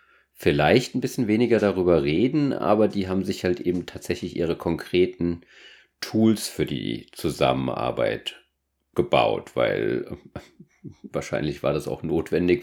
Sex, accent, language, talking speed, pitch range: male, German, German, 125 wpm, 80-110 Hz